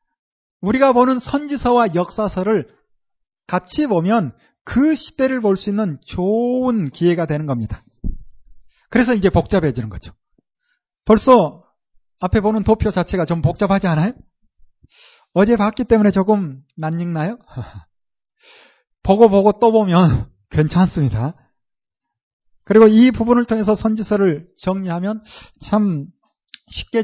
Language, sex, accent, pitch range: Korean, male, native, 170-250 Hz